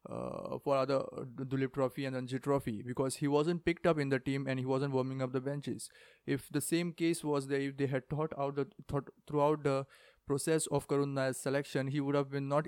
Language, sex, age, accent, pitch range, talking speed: English, male, 20-39, Indian, 130-145 Hz, 220 wpm